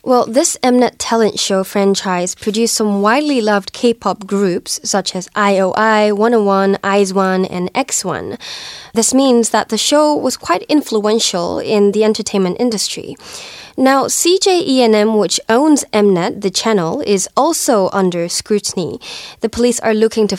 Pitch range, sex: 190-240 Hz, female